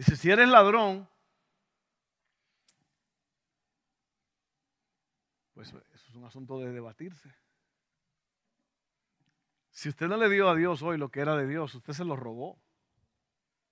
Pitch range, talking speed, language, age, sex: 145-195 Hz, 120 wpm, Spanish, 50-69, male